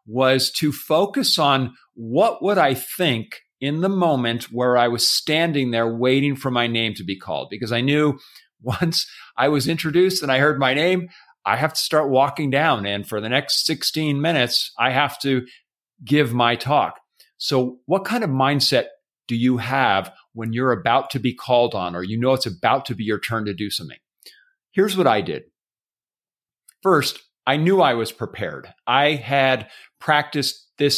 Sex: male